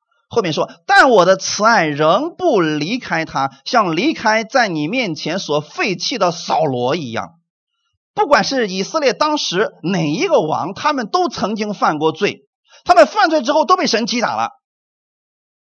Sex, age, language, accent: male, 30-49, Chinese, native